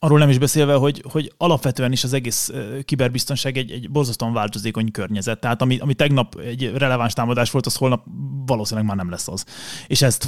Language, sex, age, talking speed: Hungarian, male, 20-39, 195 wpm